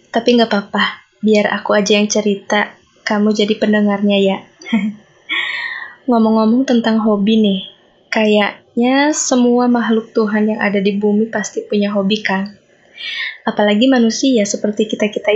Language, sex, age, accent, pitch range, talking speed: Indonesian, female, 20-39, native, 210-245 Hz, 125 wpm